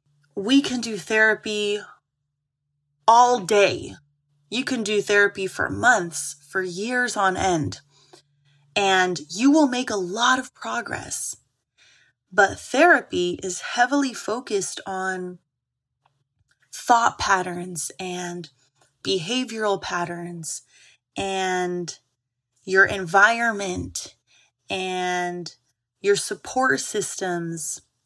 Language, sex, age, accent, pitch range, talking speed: English, female, 20-39, American, 170-210 Hz, 90 wpm